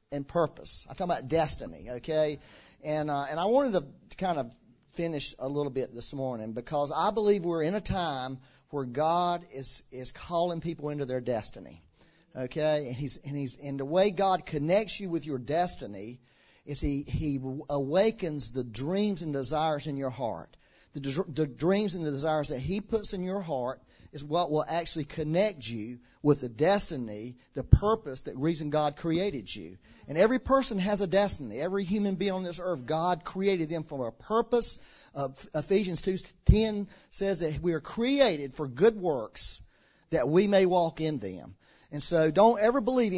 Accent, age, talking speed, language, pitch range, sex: American, 40-59, 180 wpm, English, 140-195 Hz, male